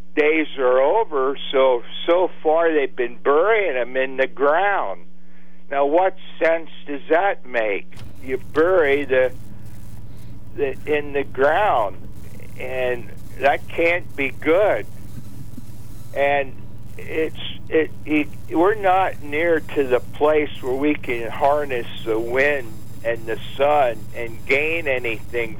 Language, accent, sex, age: English, American, male, 60-79